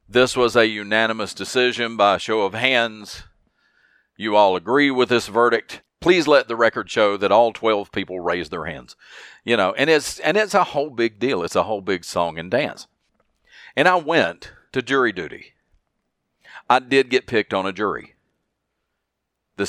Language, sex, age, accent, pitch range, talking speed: English, male, 50-69, American, 100-130 Hz, 180 wpm